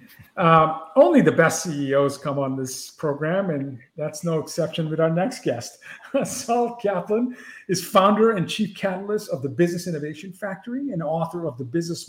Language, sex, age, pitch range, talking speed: English, male, 50-69, 155-195 Hz, 165 wpm